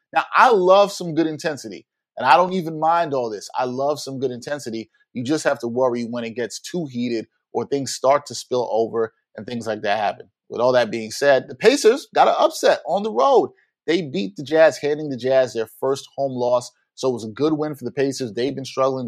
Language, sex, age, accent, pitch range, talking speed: English, male, 30-49, American, 120-140 Hz, 235 wpm